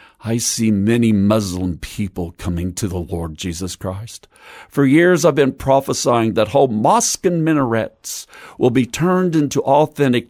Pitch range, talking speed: 105-140 Hz, 155 wpm